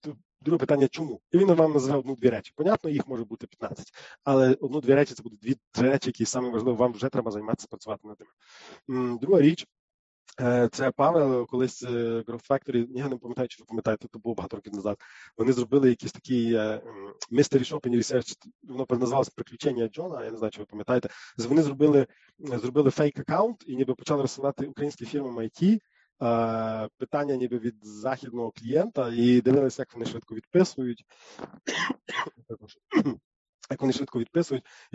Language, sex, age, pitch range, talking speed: English, male, 20-39, 115-140 Hz, 160 wpm